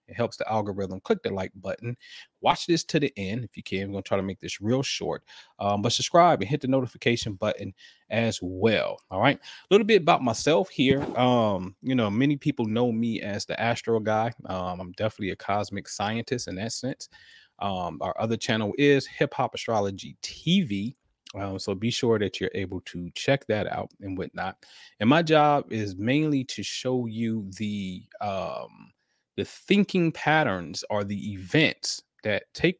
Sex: male